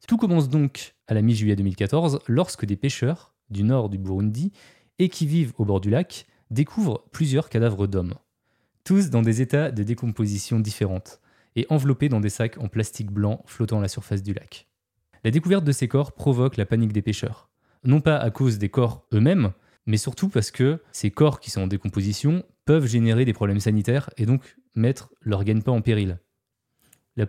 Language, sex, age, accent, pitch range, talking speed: French, male, 20-39, French, 105-140 Hz, 190 wpm